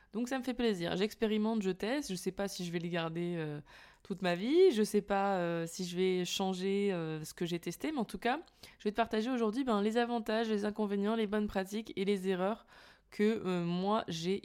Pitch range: 180-215 Hz